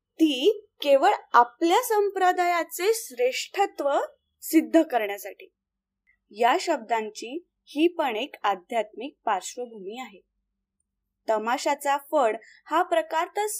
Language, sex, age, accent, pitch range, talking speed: Marathi, female, 20-39, native, 245-350 Hz, 90 wpm